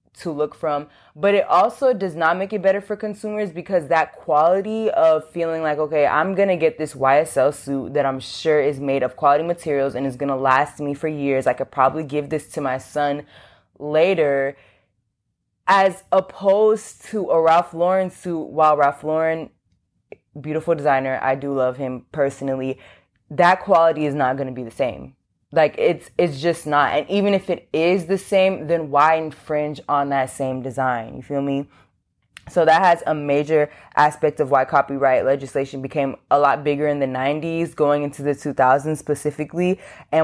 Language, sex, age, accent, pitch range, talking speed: English, female, 20-39, American, 140-170 Hz, 180 wpm